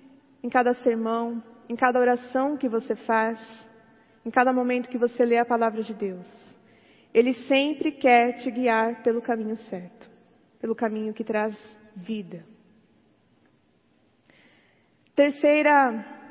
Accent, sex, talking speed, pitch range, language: Brazilian, female, 120 wpm, 230-280 Hz, Portuguese